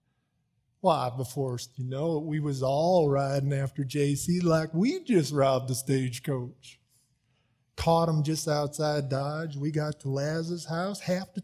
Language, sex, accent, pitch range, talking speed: English, male, American, 130-175 Hz, 145 wpm